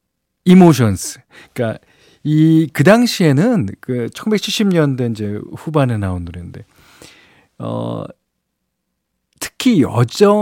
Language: Korean